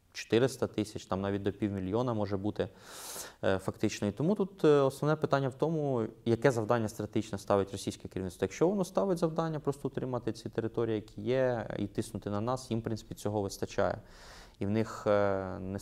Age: 20-39